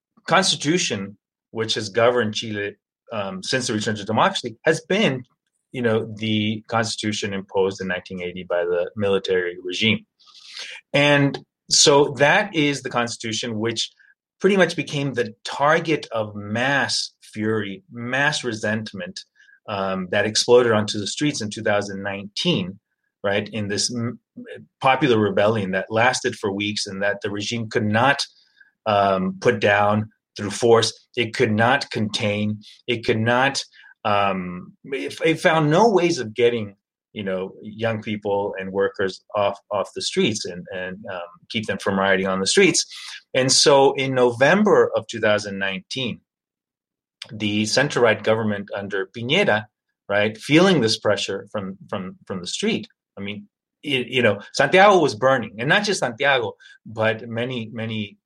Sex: male